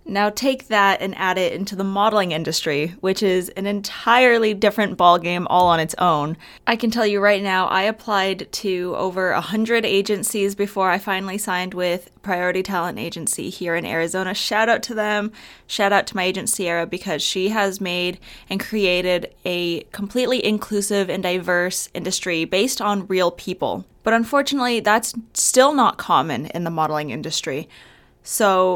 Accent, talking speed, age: American, 170 wpm, 20-39